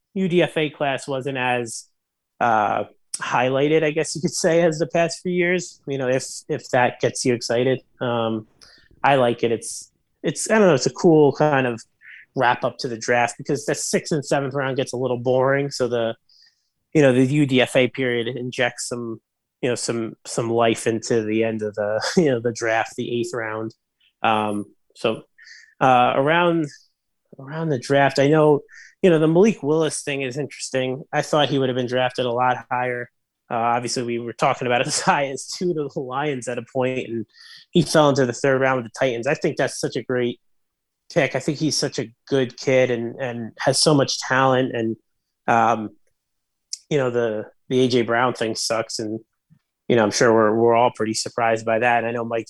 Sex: male